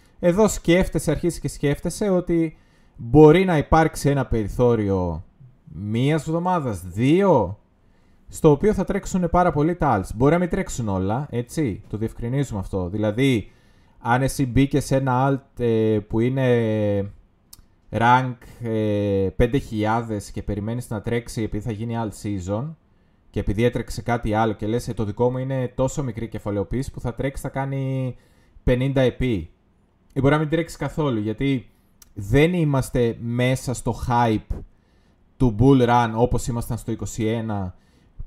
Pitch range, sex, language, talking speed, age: 105-155 Hz, male, Greek, 145 wpm, 20-39